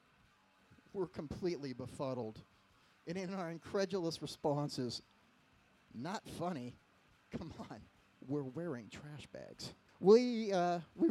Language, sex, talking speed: English, male, 105 wpm